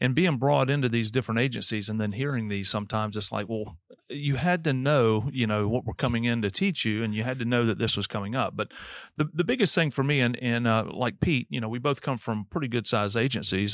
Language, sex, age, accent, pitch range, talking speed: English, male, 40-59, American, 110-140 Hz, 260 wpm